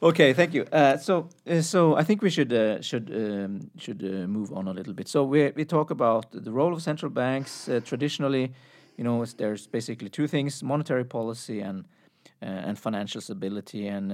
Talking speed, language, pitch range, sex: 200 wpm, English, 105-145 Hz, male